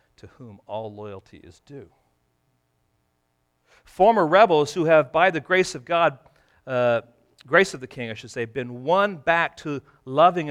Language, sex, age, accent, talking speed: English, male, 40-59, American, 160 wpm